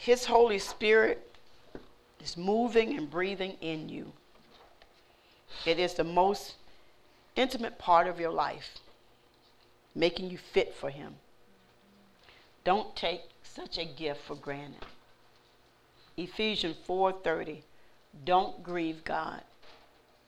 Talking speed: 105 wpm